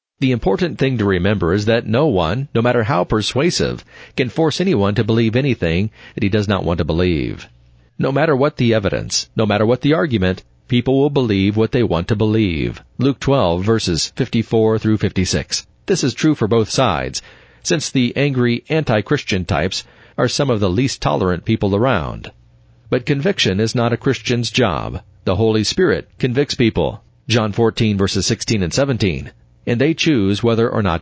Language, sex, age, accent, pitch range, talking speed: English, male, 40-59, American, 100-130 Hz, 180 wpm